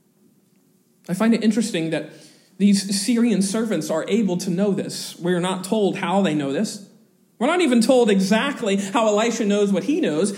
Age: 40-59